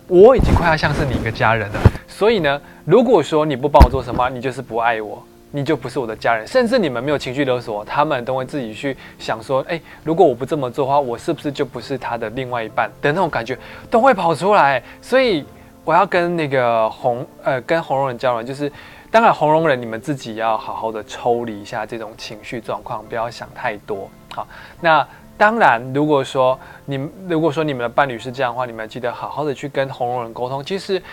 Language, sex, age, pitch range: Chinese, male, 20-39, 115-150 Hz